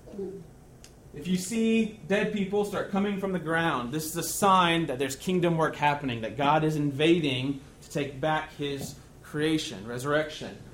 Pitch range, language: 145-190 Hz, English